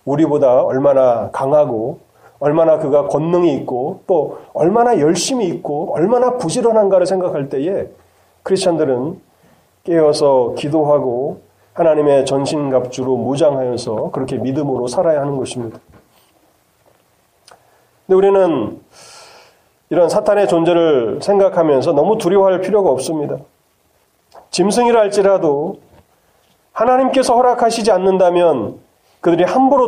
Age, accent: 40-59, native